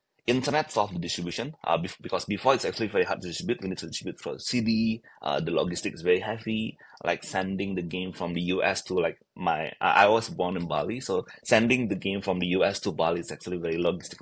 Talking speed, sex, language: 230 wpm, male, English